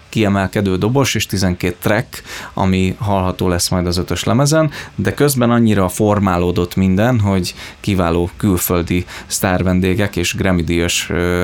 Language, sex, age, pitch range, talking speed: Hungarian, male, 20-39, 95-110 Hz, 120 wpm